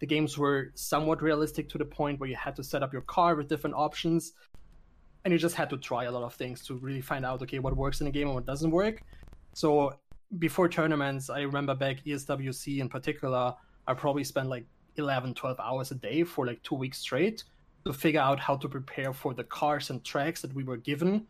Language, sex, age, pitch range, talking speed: English, male, 20-39, 135-155 Hz, 230 wpm